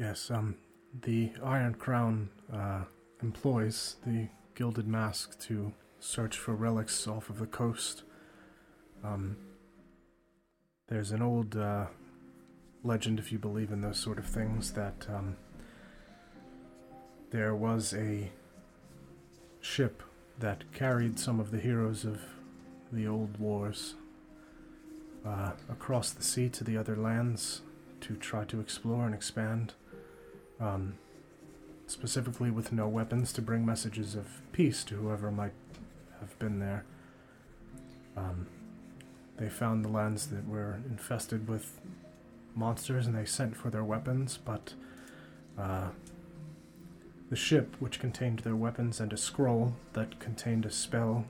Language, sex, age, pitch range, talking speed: English, male, 30-49, 105-120 Hz, 125 wpm